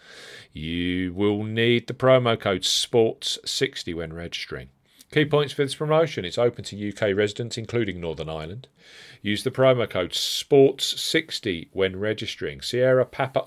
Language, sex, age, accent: English, male, 40-59, British